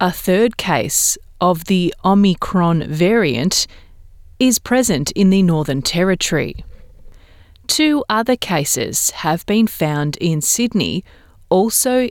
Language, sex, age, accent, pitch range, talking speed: English, female, 30-49, Australian, 155-210 Hz, 110 wpm